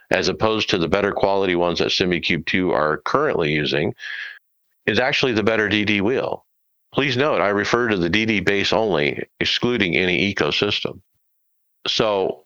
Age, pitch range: 50-69, 80-110 Hz